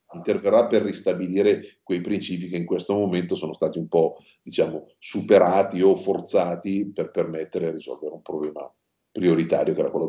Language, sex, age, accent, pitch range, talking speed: Italian, male, 50-69, native, 90-110 Hz, 160 wpm